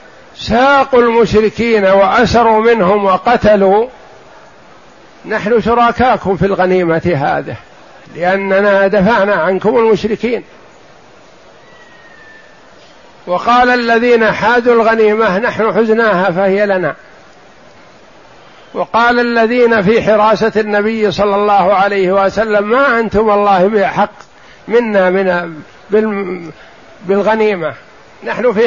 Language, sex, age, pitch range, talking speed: Arabic, male, 60-79, 190-230 Hz, 80 wpm